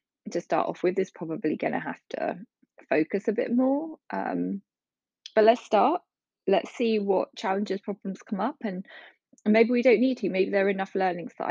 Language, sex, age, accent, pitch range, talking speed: English, female, 20-39, British, 185-235 Hz, 195 wpm